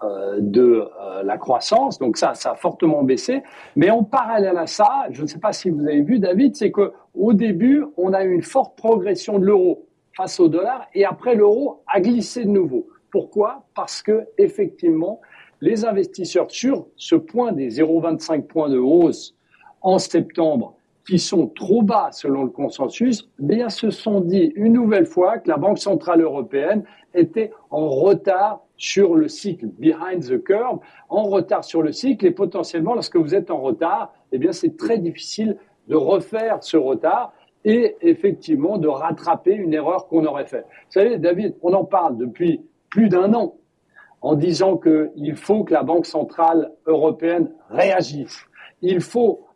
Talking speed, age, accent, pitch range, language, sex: 170 wpm, 60-79, French, 165-255 Hz, French, male